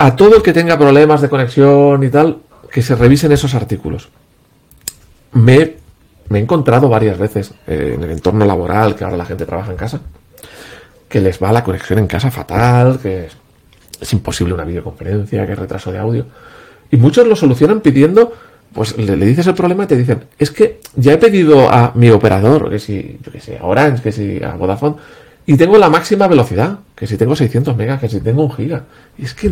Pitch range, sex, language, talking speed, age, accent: 110-160 Hz, male, Spanish, 215 wpm, 40-59, Spanish